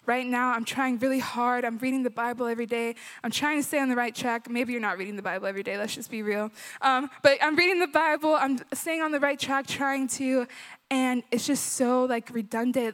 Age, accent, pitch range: 20-39, American, 220-255 Hz